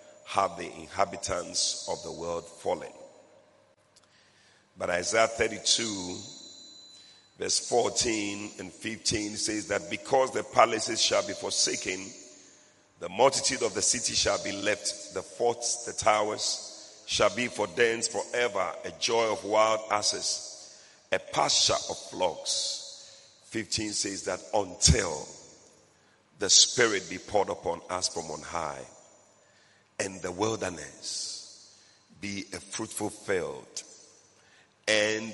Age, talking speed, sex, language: 50-69, 115 wpm, male, English